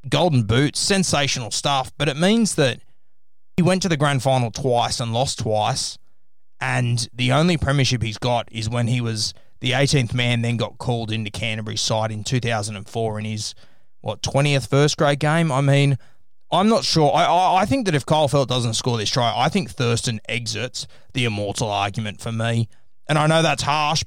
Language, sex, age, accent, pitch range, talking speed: English, male, 20-39, Australian, 115-145 Hz, 190 wpm